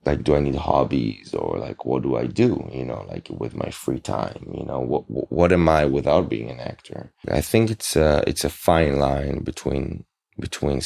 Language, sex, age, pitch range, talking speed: English, male, 30-49, 70-85 Hz, 215 wpm